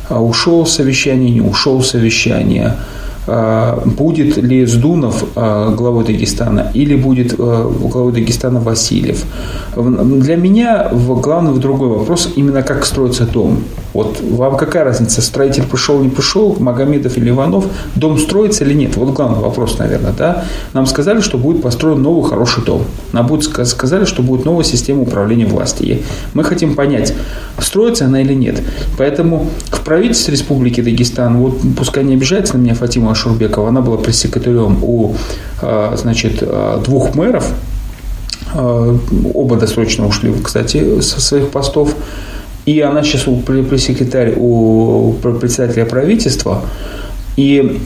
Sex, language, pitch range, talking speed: male, Russian, 115-140 Hz, 135 wpm